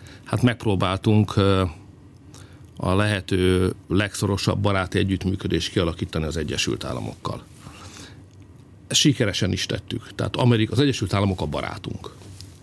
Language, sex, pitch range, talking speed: Hungarian, male, 95-115 Hz, 105 wpm